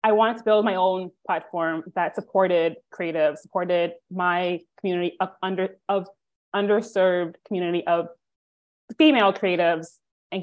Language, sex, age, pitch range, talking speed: English, female, 20-39, 175-205 Hz, 125 wpm